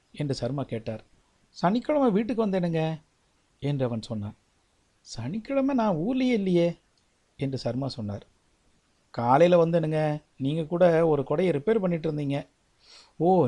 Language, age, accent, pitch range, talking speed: Tamil, 60-79, native, 130-175 Hz, 110 wpm